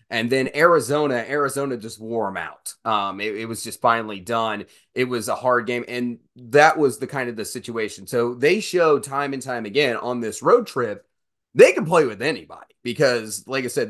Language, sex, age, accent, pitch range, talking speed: English, male, 30-49, American, 115-150 Hz, 205 wpm